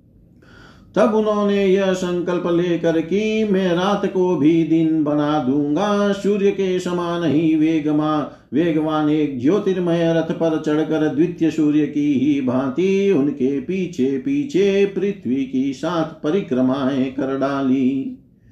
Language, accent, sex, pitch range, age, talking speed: Hindi, native, male, 150-195 Hz, 50-69, 125 wpm